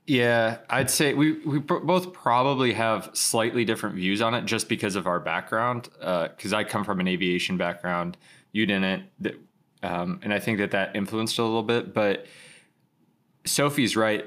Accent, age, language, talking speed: American, 20-39, English, 175 wpm